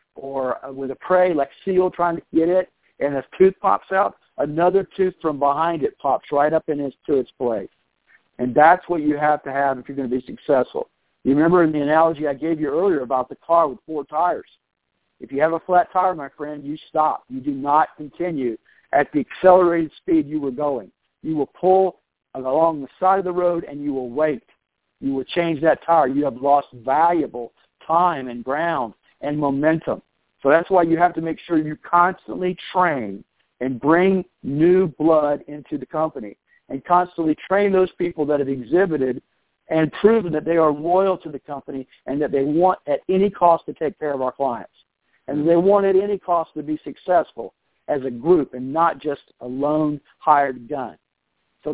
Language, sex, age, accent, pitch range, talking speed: English, male, 60-79, American, 145-180 Hz, 200 wpm